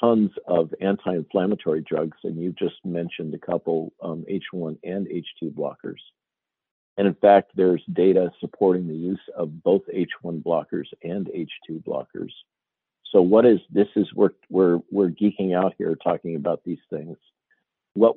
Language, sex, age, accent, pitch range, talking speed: English, male, 50-69, American, 85-105 Hz, 150 wpm